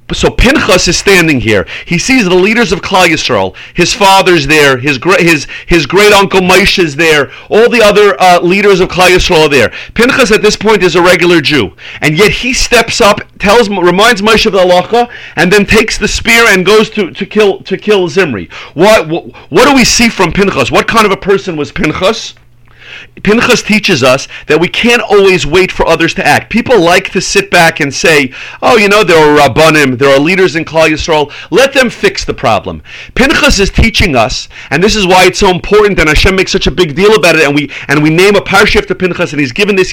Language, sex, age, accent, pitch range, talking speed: English, male, 40-59, American, 170-210 Hz, 225 wpm